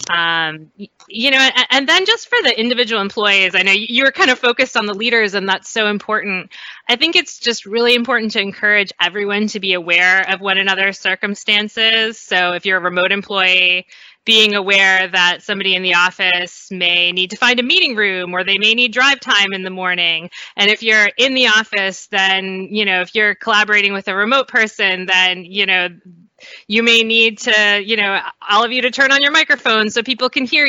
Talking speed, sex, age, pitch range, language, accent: 210 wpm, female, 20-39, 185-235 Hz, English, American